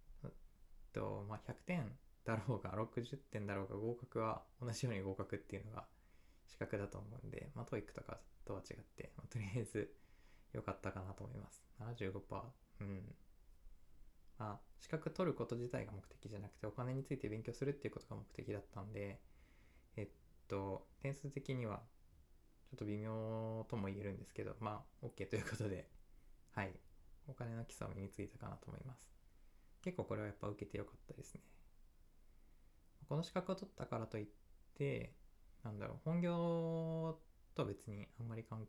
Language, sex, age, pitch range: Japanese, male, 20-39, 100-130 Hz